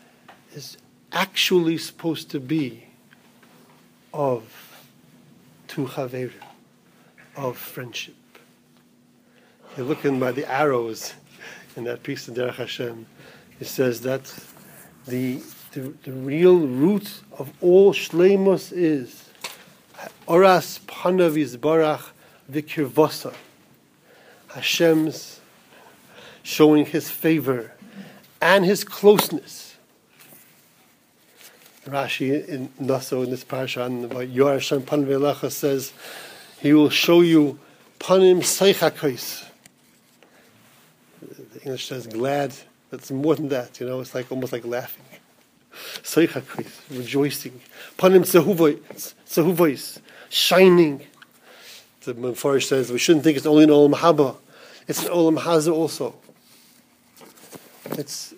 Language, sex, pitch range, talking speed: English, male, 130-170 Hz, 95 wpm